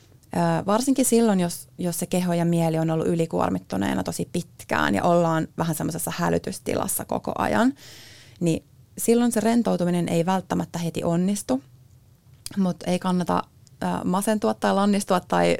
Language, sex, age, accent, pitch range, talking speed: Finnish, female, 30-49, native, 110-180 Hz, 135 wpm